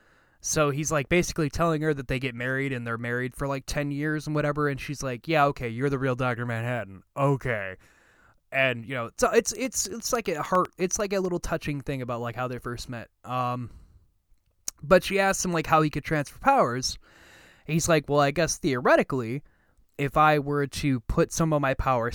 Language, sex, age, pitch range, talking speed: English, male, 20-39, 120-175 Hz, 215 wpm